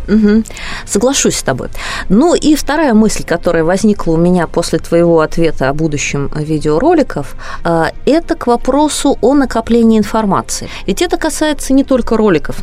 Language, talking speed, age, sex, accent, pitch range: Russian, 140 wpm, 20-39, female, native, 155-235 Hz